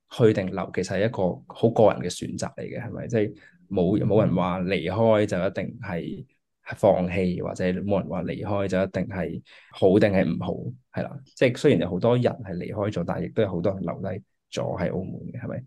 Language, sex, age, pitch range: Chinese, male, 20-39, 90-110 Hz